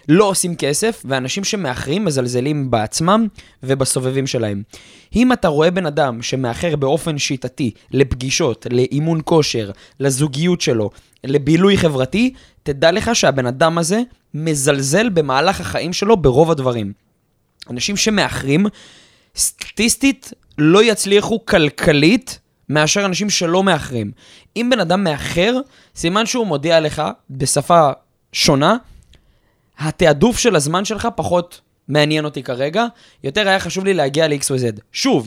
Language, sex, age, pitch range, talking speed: Hebrew, male, 20-39, 135-200 Hz, 125 wpm